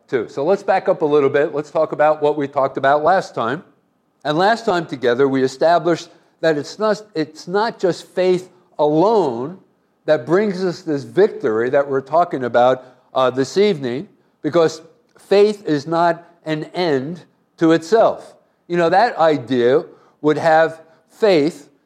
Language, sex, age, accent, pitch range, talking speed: English, male, 50-69, American, 150-185 Hz, 155 wpm